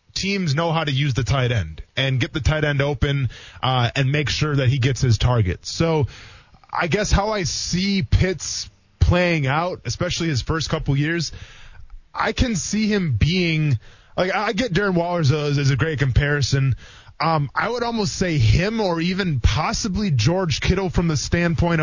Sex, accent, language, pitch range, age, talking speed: male, American, English, 120-170 Hz, 20-39, 180 wpm